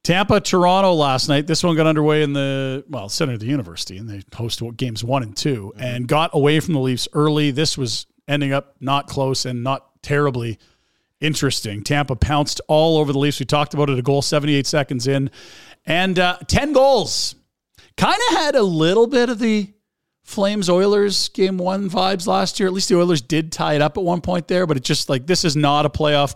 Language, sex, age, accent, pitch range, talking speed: English, male, 40-59, American, 135-175 Hz, 210 wpm